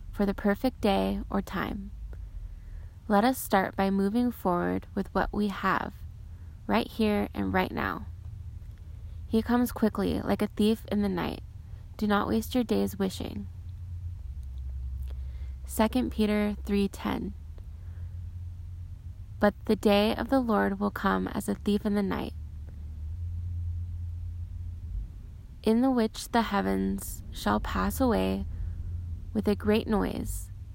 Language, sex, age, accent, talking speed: English, female, 20-39, American, 130 wpm